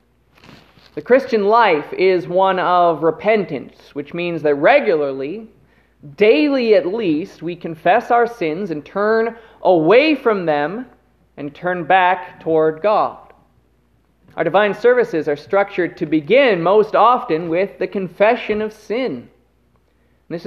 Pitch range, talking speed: 145-205 Hz, 125 wpm